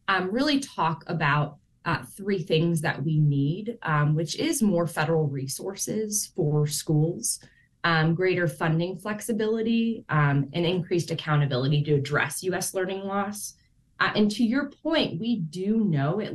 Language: English